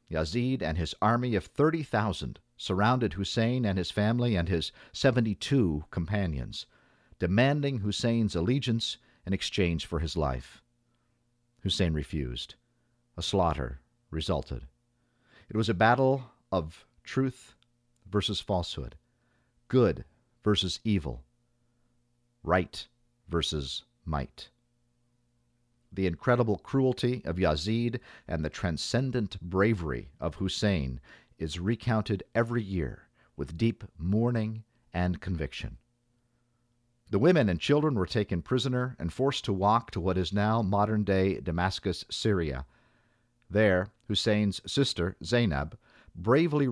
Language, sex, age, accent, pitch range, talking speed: English, male, 50-69, American, 85-120 Hz, 110 wpm